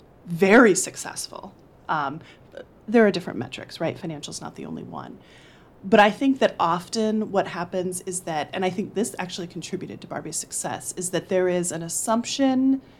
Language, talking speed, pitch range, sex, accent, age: English, 170 wpm, 155-190 Hz, female, American, 30-49